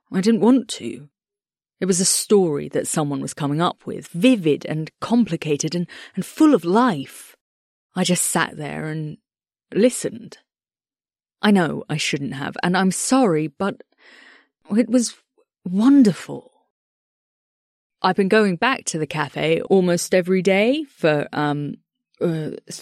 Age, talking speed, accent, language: 30-49, 140 wpm, British, English